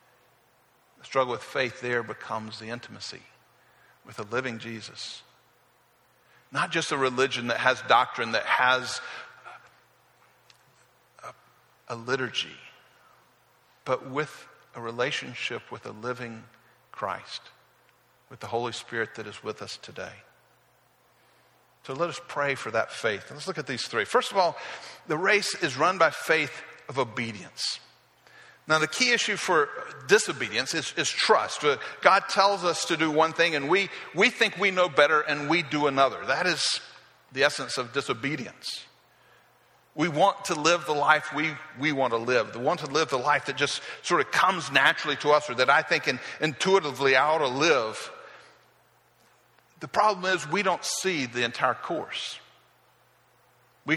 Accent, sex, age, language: American, male, 50-69, English